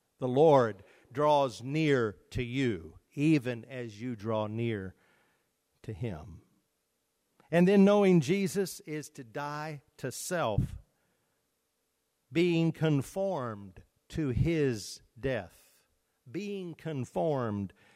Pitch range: 125-175 Hz